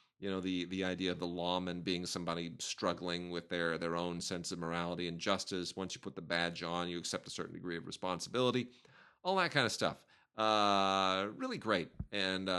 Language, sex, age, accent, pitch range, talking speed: English, male, 40-59, American, 90-125 Hz, 200 wpm